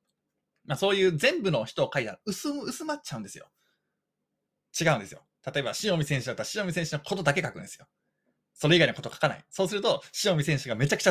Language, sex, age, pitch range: Japanese, male, 20-39, 140-200 Hz